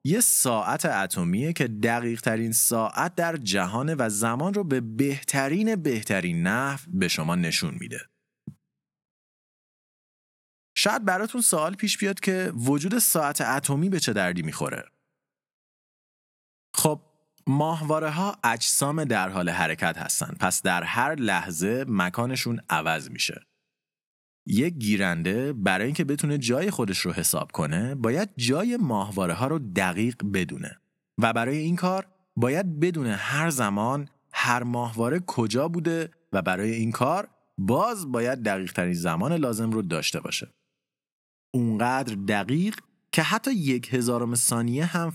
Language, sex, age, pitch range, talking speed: Persian, male, 30-49, 115-170 Hz, 125 wpm